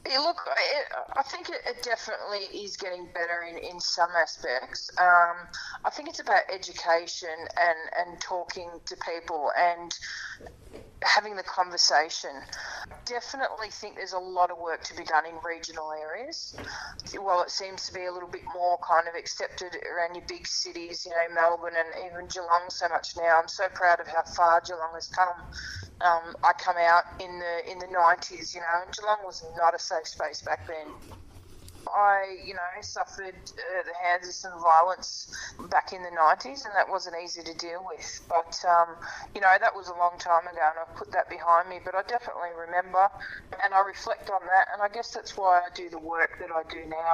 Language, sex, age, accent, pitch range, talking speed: English, female, 20-39, Australian, 170-190 Hz, 195 wpm